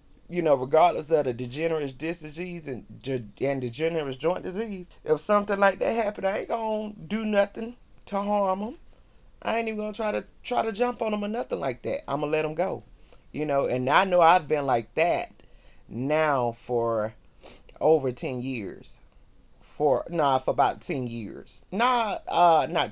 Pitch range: 120-175 Hz